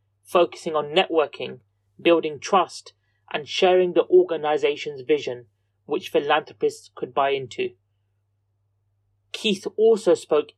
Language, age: English, 30-49